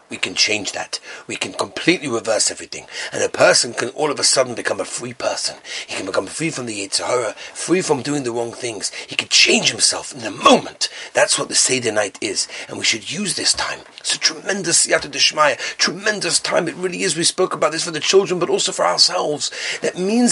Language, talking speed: English, 220 wpm